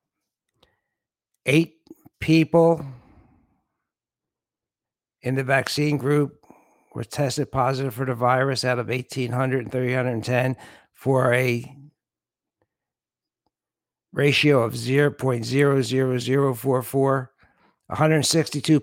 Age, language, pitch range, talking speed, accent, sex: 60-79, English, 125-140 Hz, 75 wpm, American, male